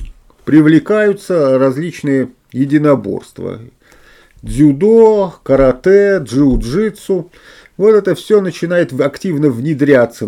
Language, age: Russian, 50-69